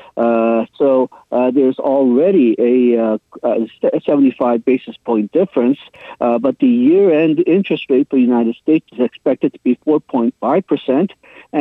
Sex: male